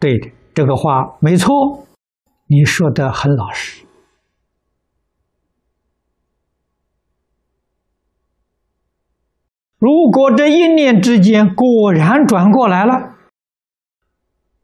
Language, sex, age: Chinese, male, 60-79